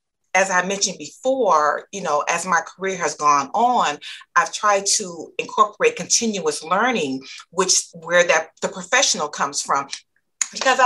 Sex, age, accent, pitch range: female, 40-59, American, 170-245 Hz